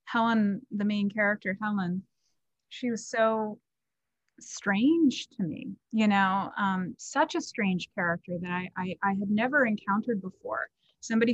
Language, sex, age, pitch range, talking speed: English, female, 30-49, 195-245 Hz, 145 wpm